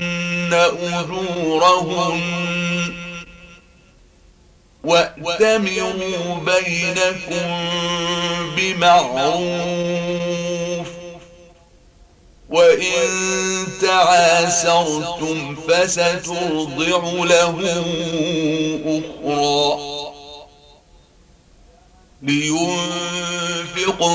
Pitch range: 165-175 Hz